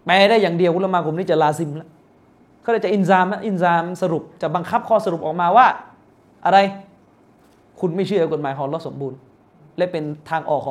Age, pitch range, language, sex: 20-39, 150-195 Hz, Thai, male